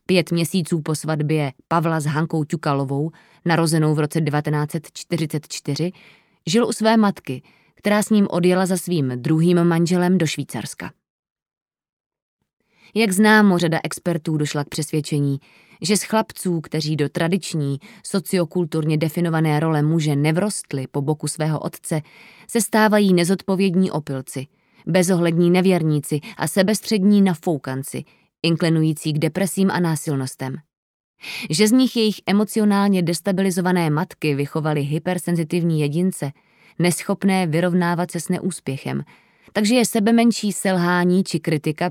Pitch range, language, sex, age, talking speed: 155-190 Hz, Czech, female, 20-39, 120 wpm